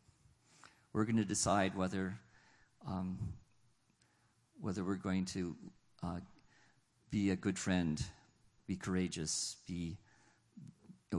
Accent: American